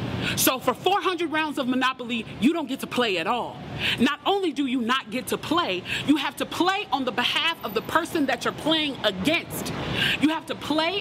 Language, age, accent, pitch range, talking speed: English, 30-49, American, 245-320 Hz, 215 wpm